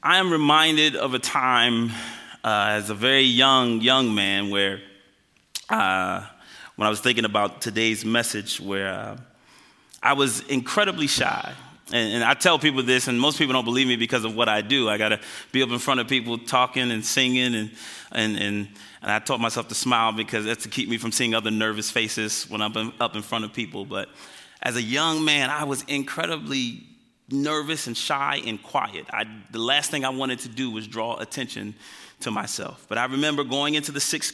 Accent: American